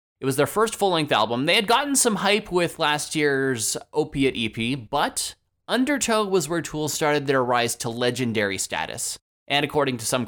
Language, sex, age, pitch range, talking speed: English, male, 20-39, 110-150 Hz, 180 wpm